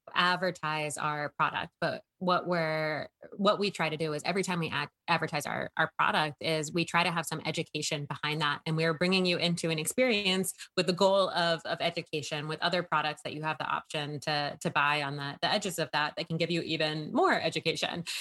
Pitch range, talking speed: 155-180 Hz, 220 wpm